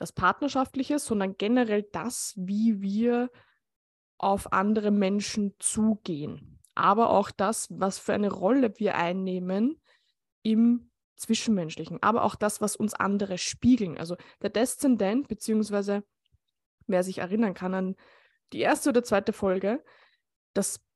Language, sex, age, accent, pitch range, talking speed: German, female, 20-39, German, 195-235 Hz, 125 wpm